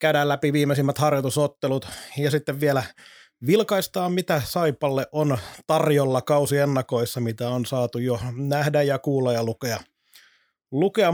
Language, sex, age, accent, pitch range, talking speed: Finnish, male, 30-49, native, 140-165 Hz, 125 wpm